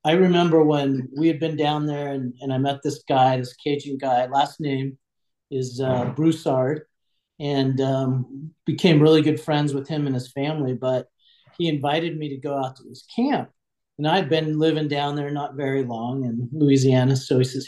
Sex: male